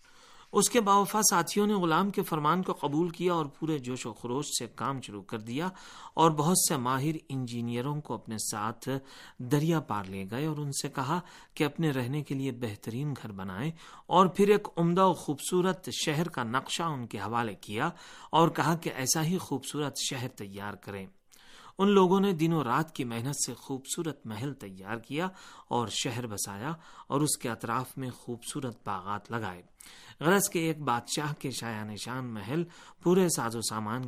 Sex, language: male, Urdu